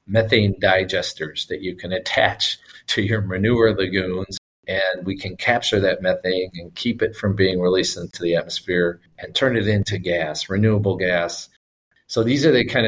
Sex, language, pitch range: male, English, 85-100 Hz